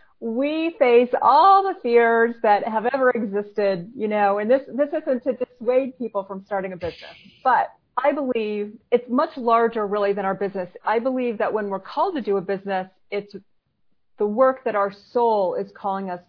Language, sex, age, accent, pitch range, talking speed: English, female, 40-59, American, 205-255 Hz, 190 wpm